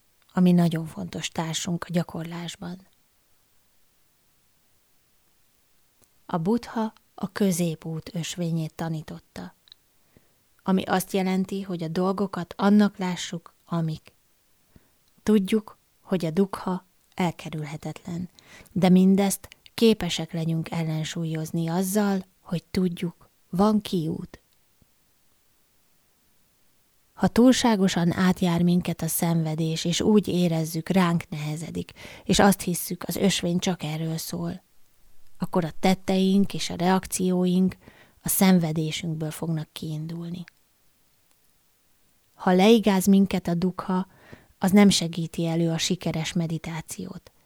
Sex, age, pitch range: female, 20-39, 165-190 Hz